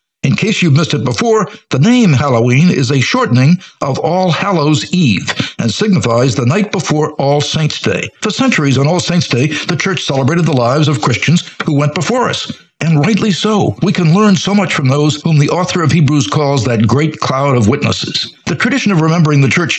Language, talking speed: English, 205 wpm